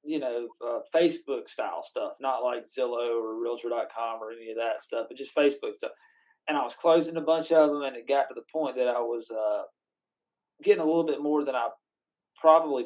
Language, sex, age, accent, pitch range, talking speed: English, male, 30-49, American, 125-160 Hz, 225 wpm